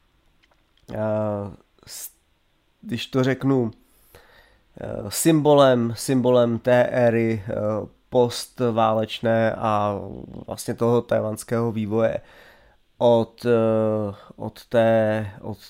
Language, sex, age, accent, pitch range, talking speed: Czech, male, 20-39, native, 110-125 Hz, 60 wpm